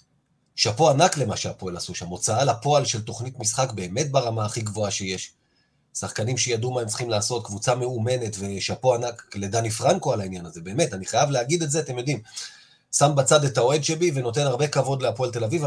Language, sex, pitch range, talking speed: Hebrew, male, 110-145 Hz, 190 wpm